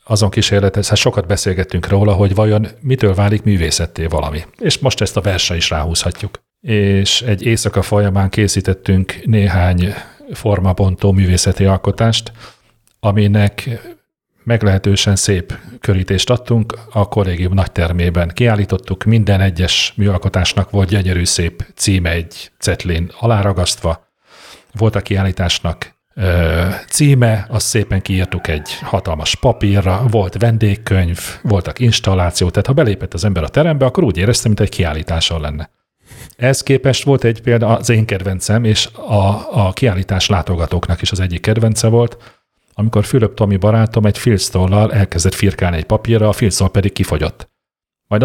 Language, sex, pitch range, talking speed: Hungarian, male, 90-110 Hz, 135 wpm